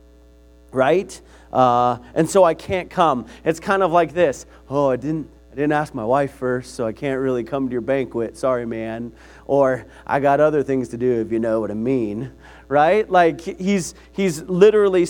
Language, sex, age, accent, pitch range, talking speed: English, male, 30-49, American, 125-175 Hz, 195 wpm